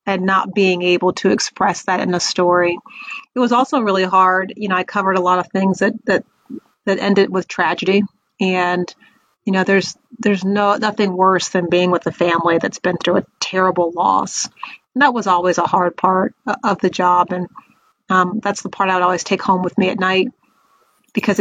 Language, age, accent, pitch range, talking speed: English, 30-49, American, 185-210 Hz, 205 wpm